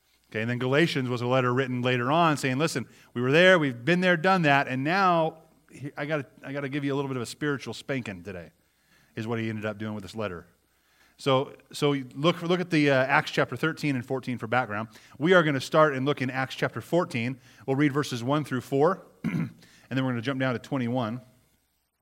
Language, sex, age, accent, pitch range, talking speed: English, male, 30-49, American, 120-155 Hz, 235 wpm